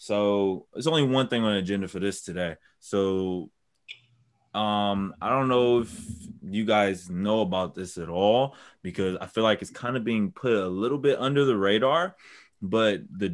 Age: 20-39